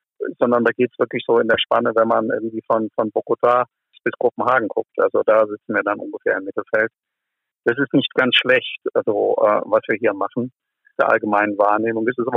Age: 50-69